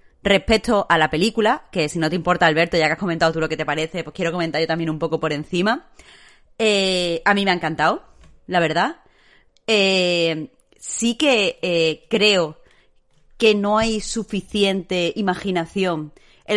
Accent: Spanish